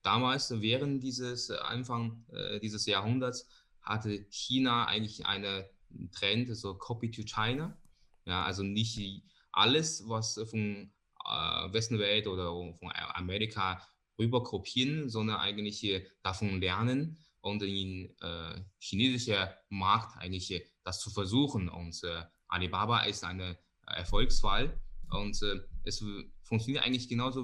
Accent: German